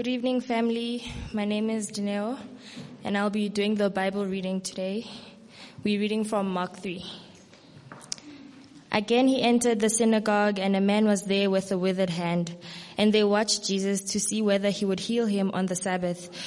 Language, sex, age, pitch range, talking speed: English, female, 20-39, 185-210 Hz, 175 wpm